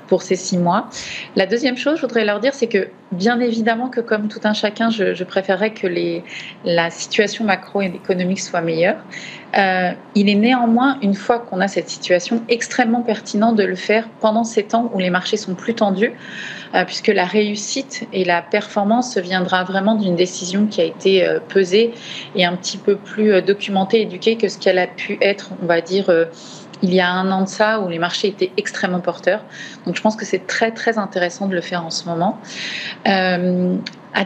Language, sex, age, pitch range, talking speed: French, female, 30-49, 185-220 Hz, 205 wpm